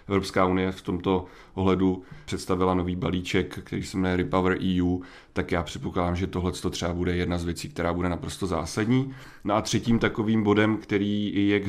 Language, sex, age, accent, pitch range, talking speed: Czech, male, 30-49, native, 95-100 Hz, 180 wpm